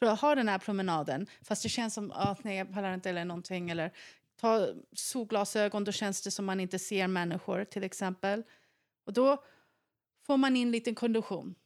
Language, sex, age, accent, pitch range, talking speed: Swedish, female, 30-49, native, 185-225 Hz, 185 wpm